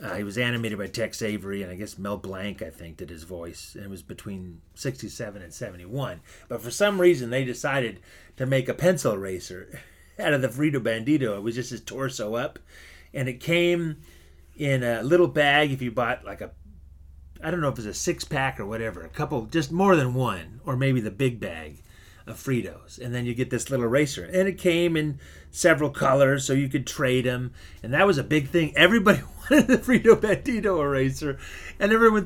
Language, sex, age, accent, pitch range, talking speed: English, male, 30-49, American, 110-150 Hz, 210 wpm